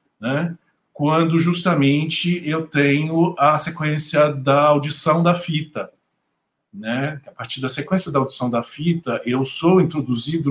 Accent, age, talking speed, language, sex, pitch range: Brazilian, 50-69, 130 wpm, Portuguese, male, 120-160 Hz